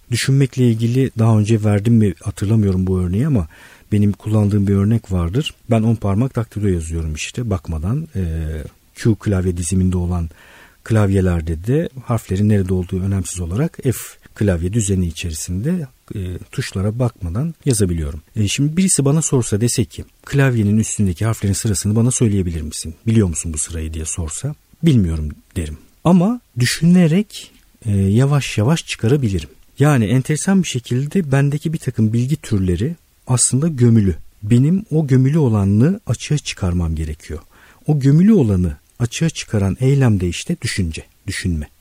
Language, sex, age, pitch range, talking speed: Turkish, male, 50-69, 90-125 Hz, 135 wpm